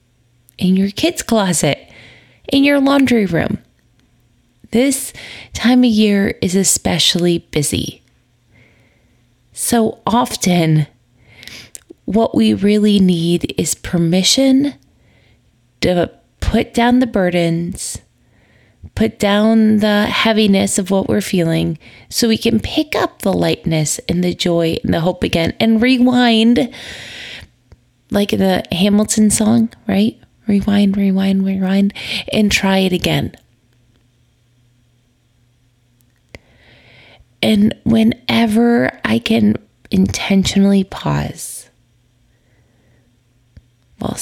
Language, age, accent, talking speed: English, 20-39, American, 100 wpm